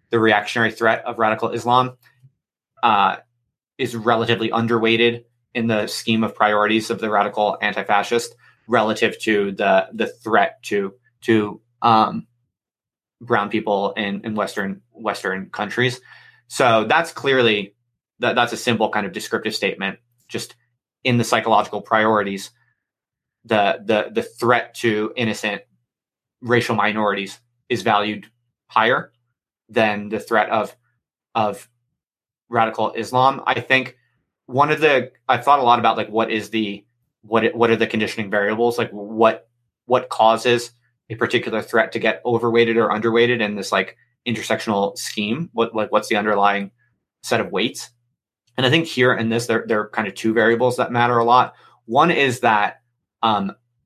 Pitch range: 105-120 Hz